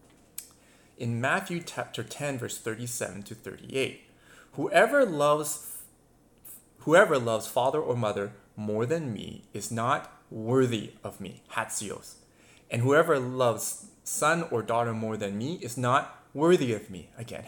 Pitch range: 105-150 Hz